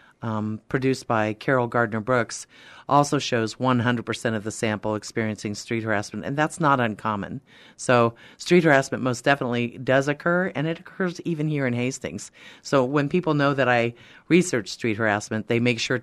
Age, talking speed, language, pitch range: 50-69, 170 wpm, English, 110-135 Hz